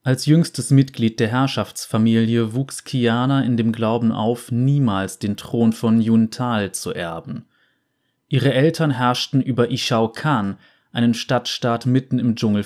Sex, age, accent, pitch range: male, 30-49, German, 115-135 Hz